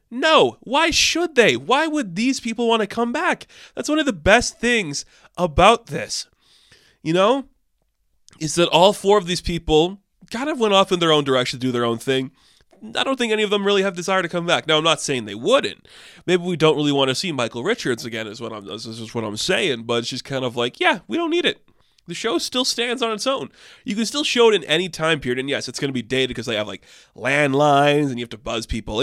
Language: English